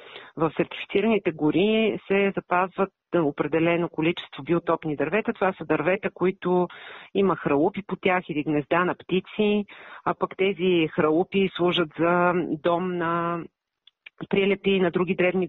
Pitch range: 150-185 Hz